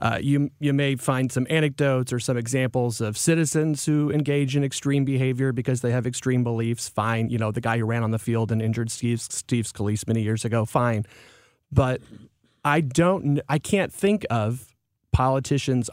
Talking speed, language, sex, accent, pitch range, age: 185 wpm, English, male, American, 115-140 Hz, 30-49